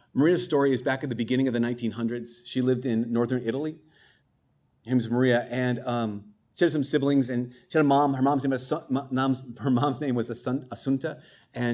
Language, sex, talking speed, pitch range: English, male, 185 wpm, 125-145 Hz